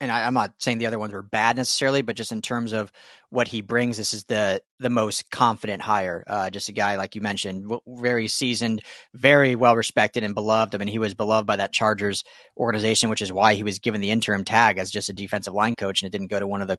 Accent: American